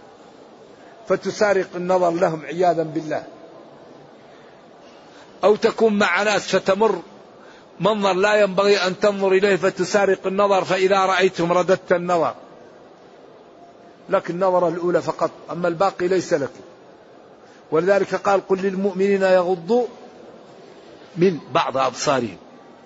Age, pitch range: 50-69, 175-200 Hz